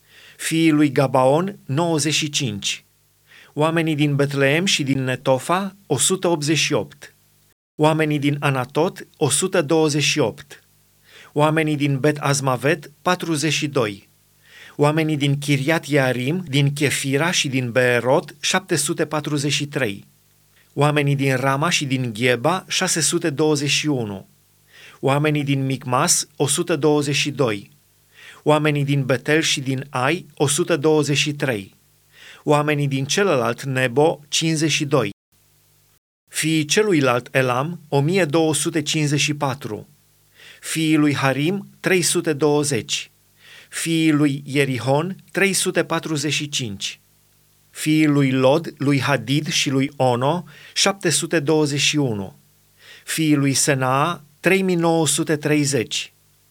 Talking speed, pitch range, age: 80 wpm, 140-160 Hz, 30-49